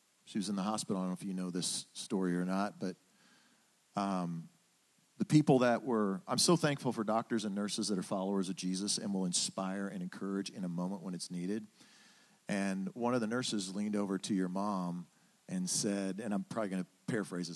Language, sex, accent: English, male, American